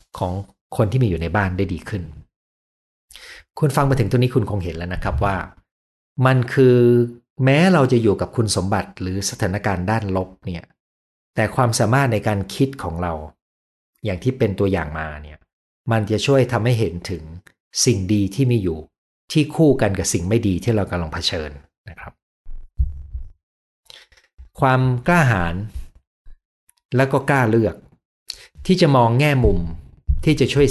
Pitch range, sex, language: 85-120 Hz, male, Thai